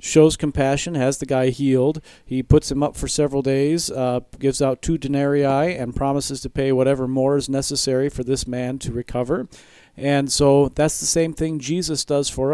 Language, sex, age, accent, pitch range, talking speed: English, male, 40-59, American, 125-145 Hz, 190 wpm